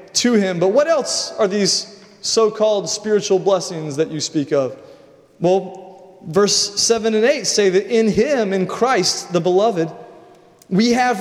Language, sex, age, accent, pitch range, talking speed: English, male, 30-49, American, 185-235 Hz, 160 wpm